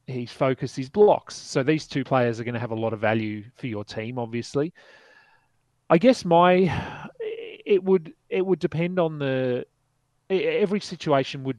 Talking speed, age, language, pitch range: 160 wpm, 30-49, English, 120-150 Hz